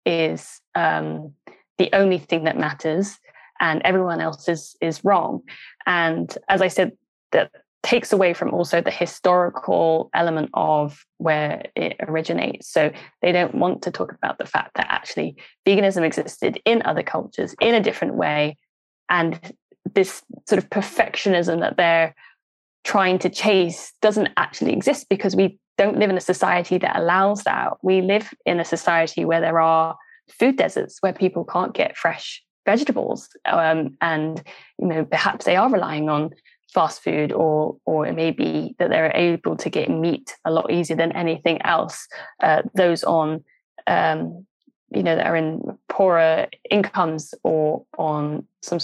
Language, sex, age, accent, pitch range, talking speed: English, female, 20-39, British, 160-195 Hz, 160 wpm